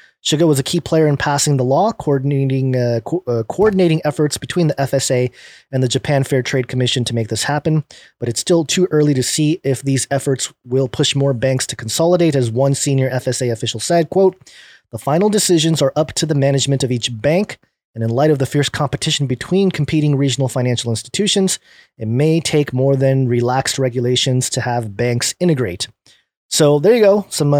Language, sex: English, male